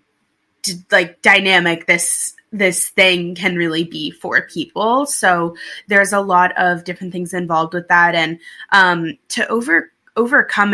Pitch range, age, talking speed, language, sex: 170-200 Hz, 20-39, 140 wpm, English, female